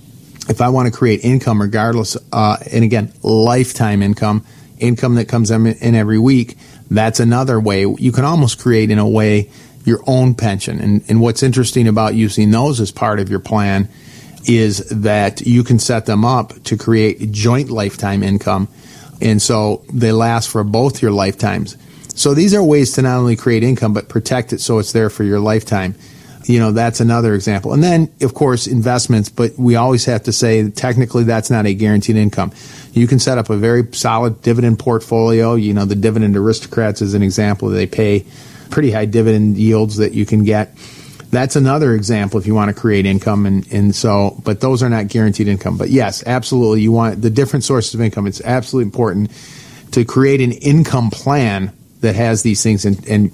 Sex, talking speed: male, 190 wpm